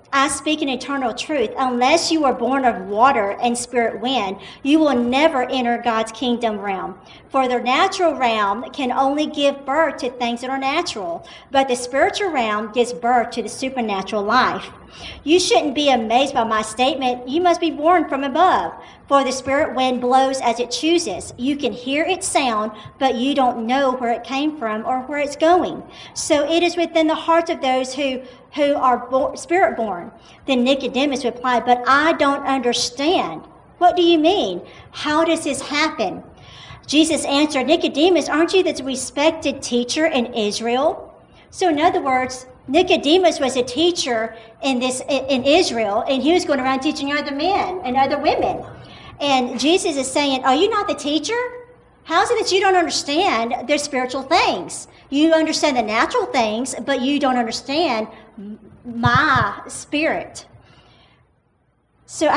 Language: English